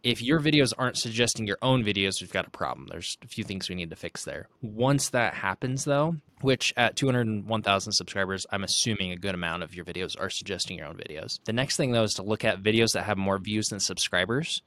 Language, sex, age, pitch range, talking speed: English, male, 20-39, 95-120 Hz, 235 wpm